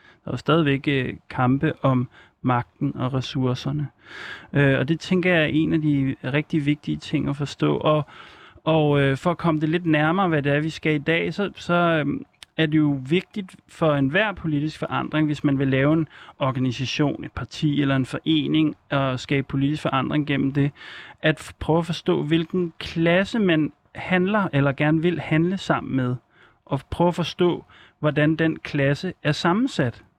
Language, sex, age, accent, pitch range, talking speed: Danish, male, 30-49, native, 135-165 Hz, 175 wpm